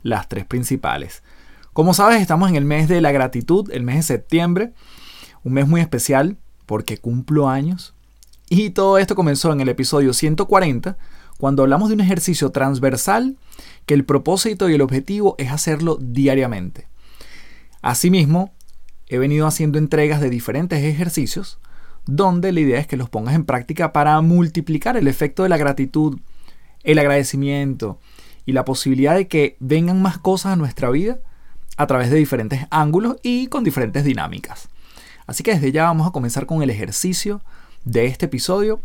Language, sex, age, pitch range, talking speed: Spanish, male, 30-49, 130-175 Hz, 160 wpm